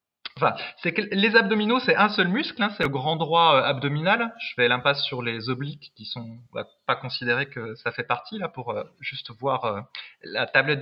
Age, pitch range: 20-39, 140-200 Hz